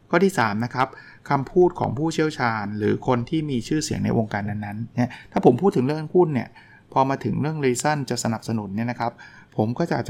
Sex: male